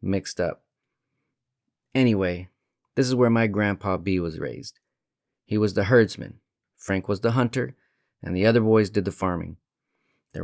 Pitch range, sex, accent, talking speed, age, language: 95-115 Hz, male, American, 155 wpm, 30-49, English